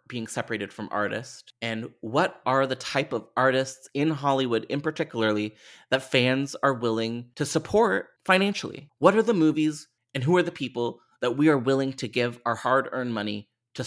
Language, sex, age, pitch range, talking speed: English, male, 30-49, 120-155 Hz, 175 wpm